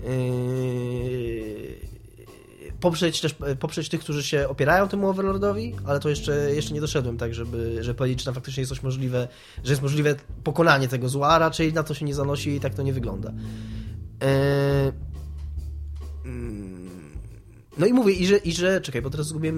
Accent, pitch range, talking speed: native, 125-165 Hz, 155 wpm